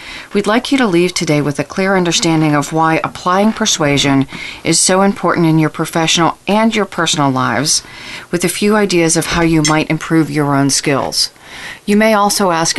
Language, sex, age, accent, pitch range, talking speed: English, female, 40-59, American, 150-195 Hz, 190 wpm